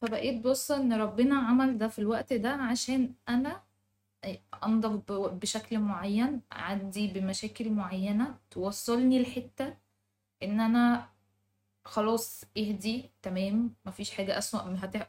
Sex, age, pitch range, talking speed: female, 20-39, 185-235 Hz, 115 wpm